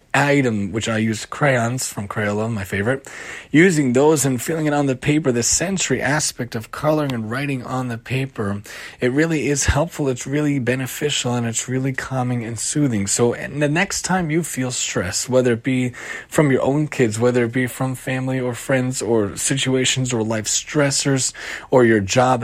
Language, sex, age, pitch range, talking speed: English, male, 30-49, 125-150 Hz, 185 wpm